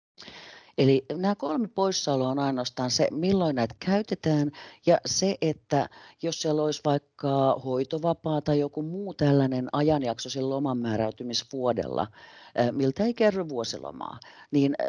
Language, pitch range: Finnish, 125-170 Hz